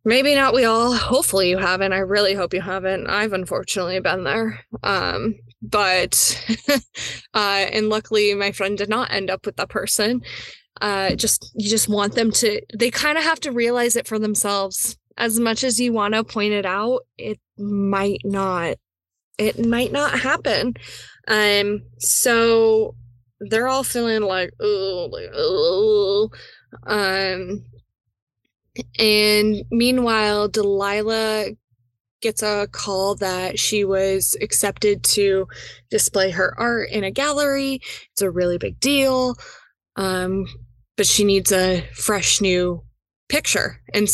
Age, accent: 10-29, American